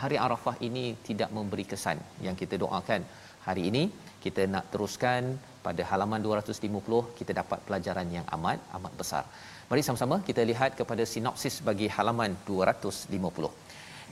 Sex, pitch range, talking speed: male, 100-125 Hz, 140 wpm